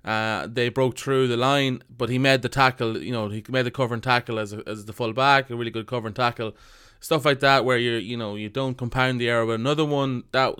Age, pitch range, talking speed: 20-39, 110-135 Hz, 265 wpm